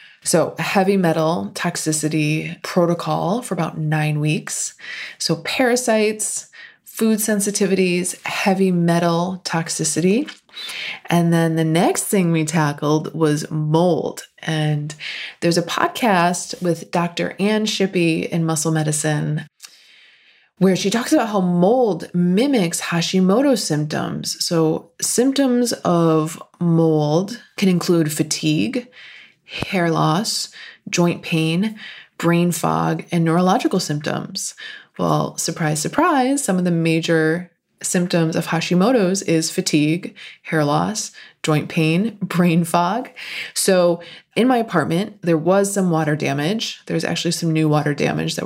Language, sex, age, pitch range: English, female, 20-39, 160-200 Hz